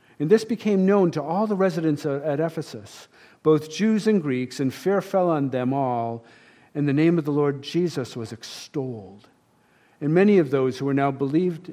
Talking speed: 190 wpm